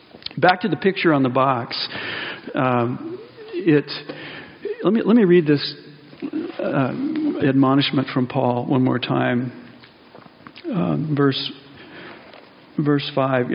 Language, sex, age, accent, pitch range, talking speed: English, male, 50-69, American, 135-175 Hz, 105 wpm